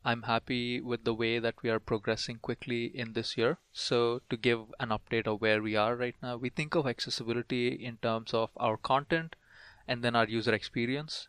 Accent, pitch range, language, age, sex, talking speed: Indian, 110-120 Hz, English, 20-39, male, 200 wpm